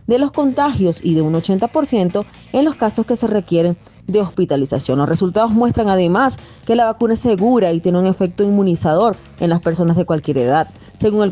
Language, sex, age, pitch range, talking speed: Spanish, female, 30-49, 170-210 Hz, 195 wpm